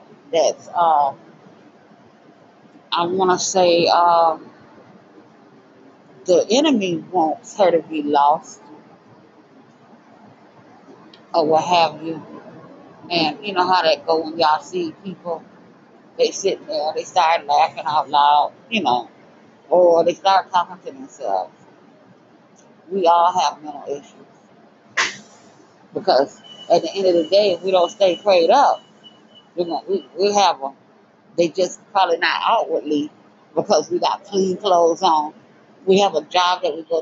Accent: American